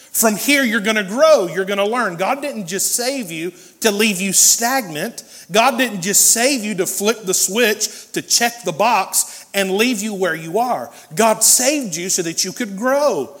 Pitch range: 185-245 Hz